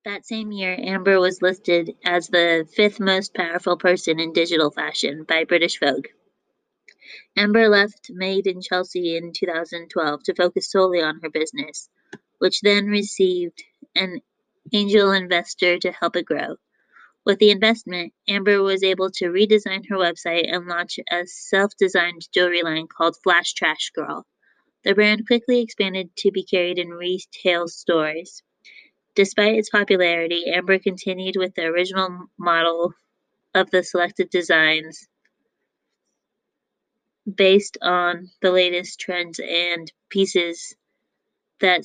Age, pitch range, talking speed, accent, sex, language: 20-39, 175-200 Hz, 130 wpm, American, female, English